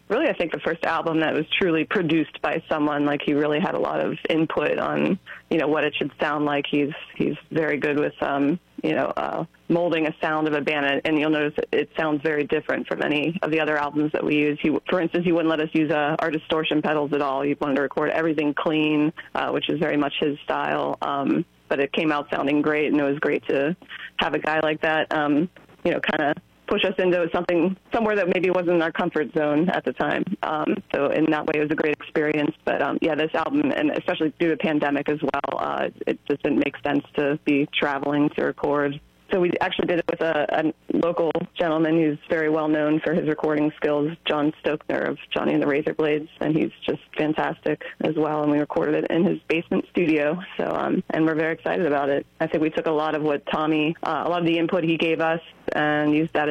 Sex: female